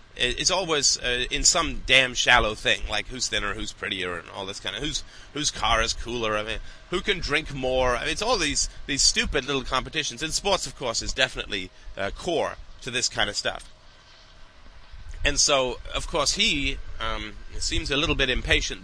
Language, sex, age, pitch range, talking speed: English, male, 30-49, 95-130 Hz, 200 wpm